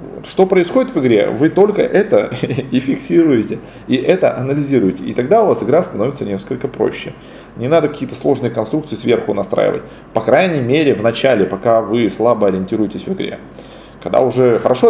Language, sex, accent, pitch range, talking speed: Russian, male, native, 115-185 Hz, 165 wpm